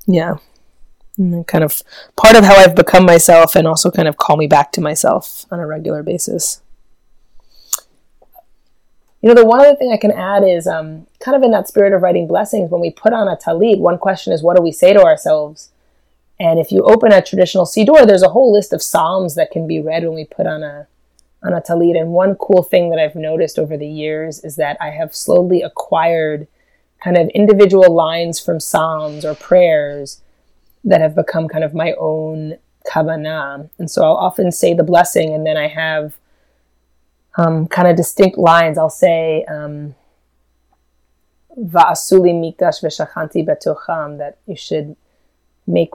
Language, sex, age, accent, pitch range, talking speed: English, female, 20-39, American, 150-185 Hz, 180 wpm